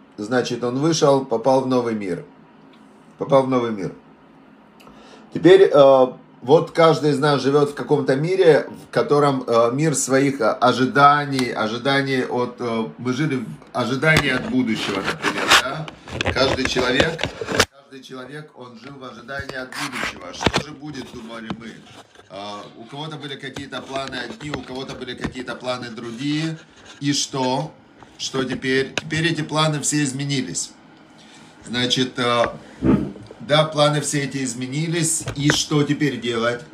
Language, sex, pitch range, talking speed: Russian, male, 125-150 Hz, 140 wpm